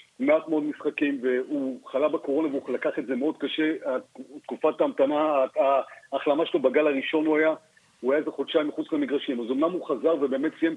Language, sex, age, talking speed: Hebrew, male, 50-69, 180 wpm